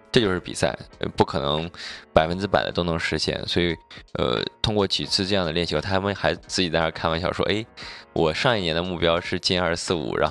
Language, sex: Chinese, male